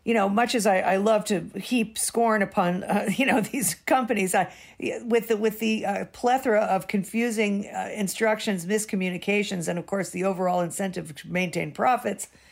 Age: 50-69